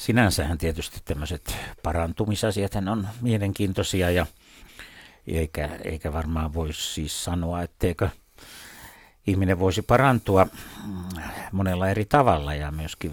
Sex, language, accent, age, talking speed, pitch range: male, Finnish, native, 60-79, 100 wpm, 85-105 Hz